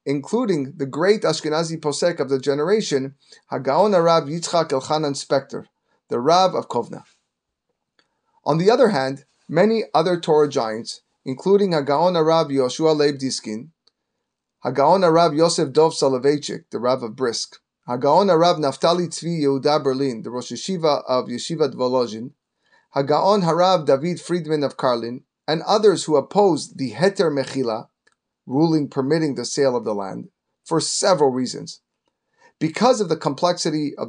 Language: English